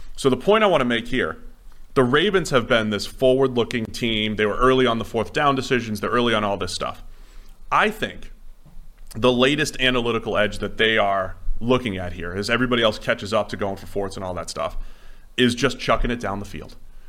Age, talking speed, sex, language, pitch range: 30-49, 215 wpm, male, English, 100-130 Hz